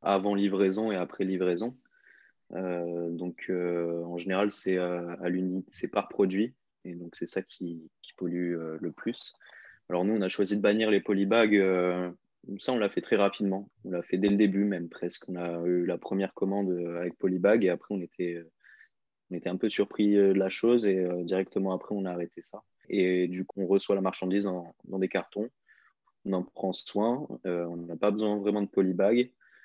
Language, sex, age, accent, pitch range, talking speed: French, male, 20-39, French, 90-100 Hz, 210 wpm